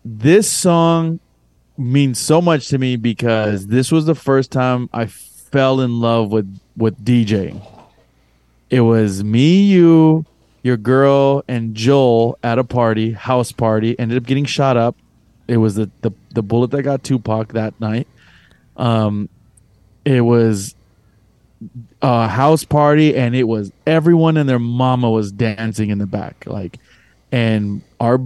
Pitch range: 110-135 Hz